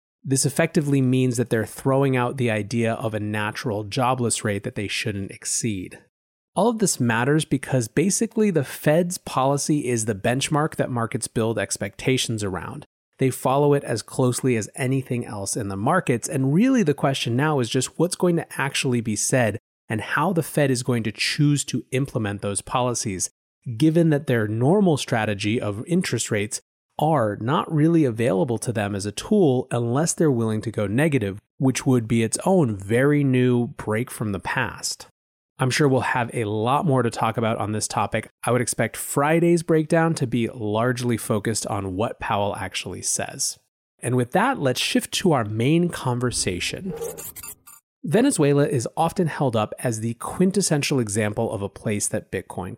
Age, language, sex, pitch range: 30-49, English, male, 115-145 Hz